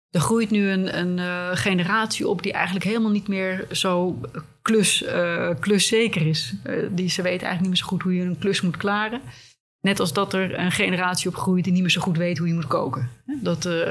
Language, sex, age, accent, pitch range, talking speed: Dutch, female, 30-49, Dutch, 155-185 Hz, 215 wpm